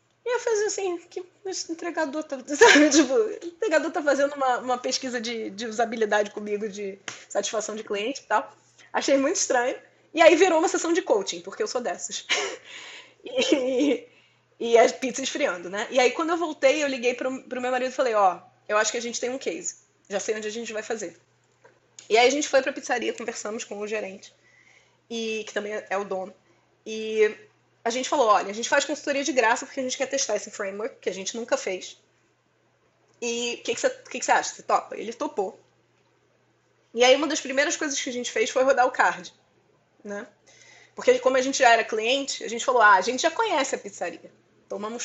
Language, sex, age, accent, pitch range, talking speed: Portuguese, female, 20-39, Brazilian, 220-310 Hz, 215 wpm